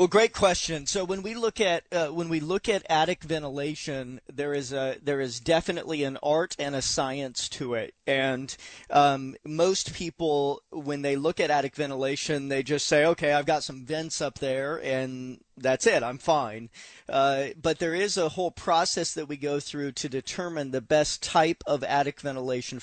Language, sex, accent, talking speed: English, male, American, 190 wpm